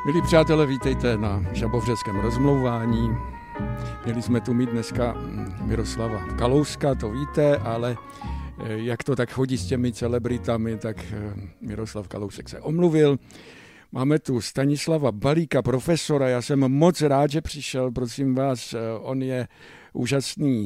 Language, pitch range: Czech, 110-130 Hz